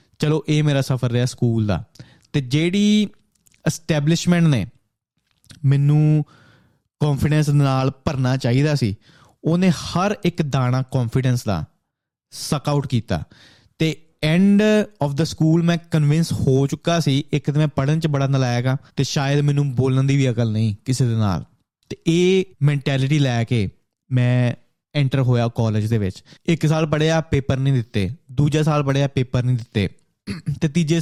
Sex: male